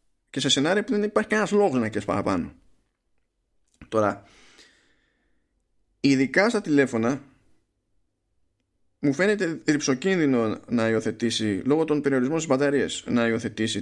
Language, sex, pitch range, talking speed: Greek, male, 95-130 Hz, 115 wpm